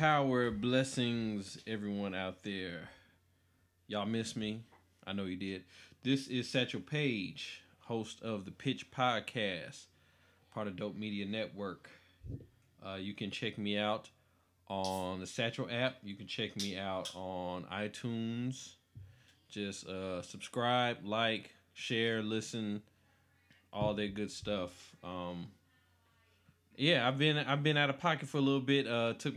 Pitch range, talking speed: 95-115 Hz, 140 wpm